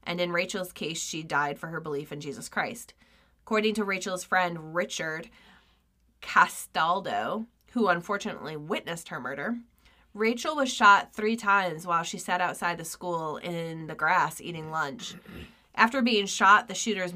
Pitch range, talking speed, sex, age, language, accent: 155-200 Hz, 155 wpm, female, 20-39, English, American